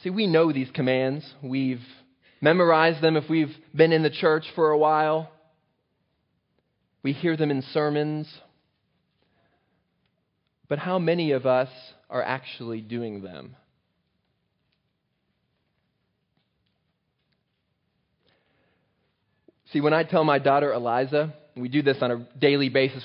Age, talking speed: 20-39, 115 wpm